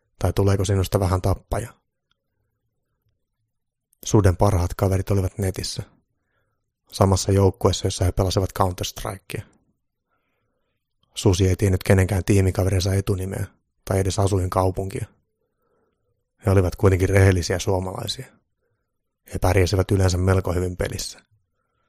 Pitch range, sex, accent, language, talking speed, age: 95-105 Hz, male, native, Finnish, 100 wpm, 30-49